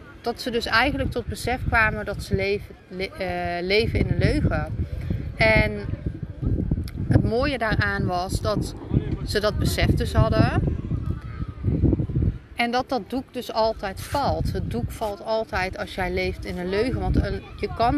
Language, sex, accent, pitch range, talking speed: Dutch, female, Dutch, 175-230 Hz, 160 wpm